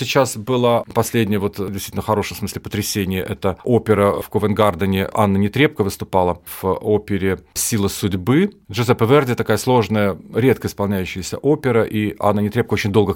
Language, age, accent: Russian, 40-59, native